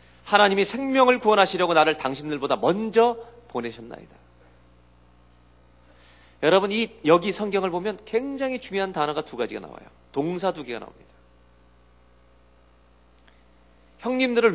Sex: male